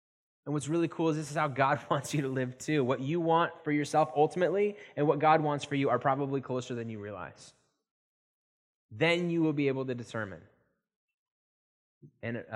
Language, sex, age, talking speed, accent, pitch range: English, male, 10-29, 190 wpm, American, 100-130 Hz